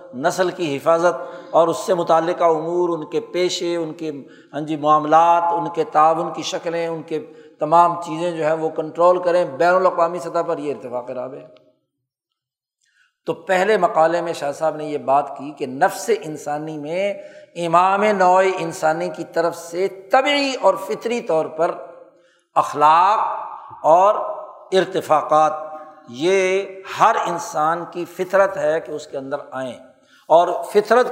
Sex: male